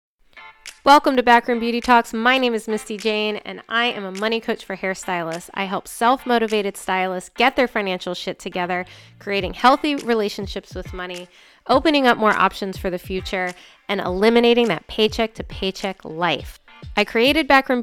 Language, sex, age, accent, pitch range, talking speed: English, female, 20-39, American, 190-240 Hz, 160 wpm